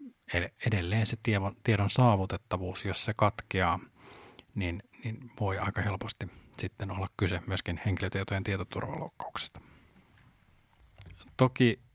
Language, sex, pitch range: Finnish, male, 95-110 Hz